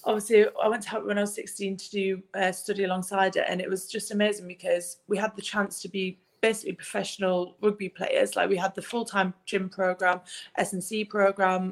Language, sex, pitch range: English, female, 180-205 Hz